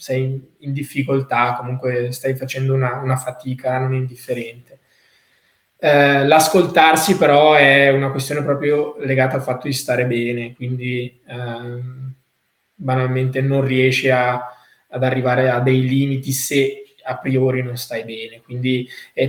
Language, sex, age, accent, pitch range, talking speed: Italian, male, 20-39, native, 125-145 Hz, 135 wpm